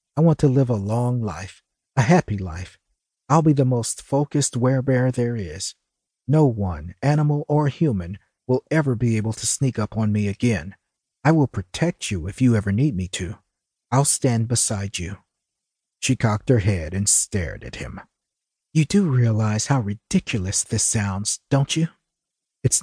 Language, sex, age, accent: English, male, 50-69, American